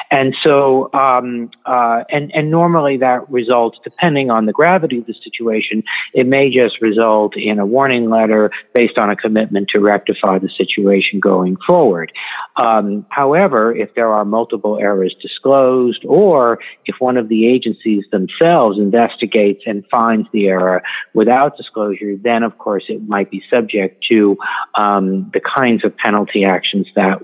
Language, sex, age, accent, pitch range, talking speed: English, male, 50-69, American, 105-130 Hz, 155 wpm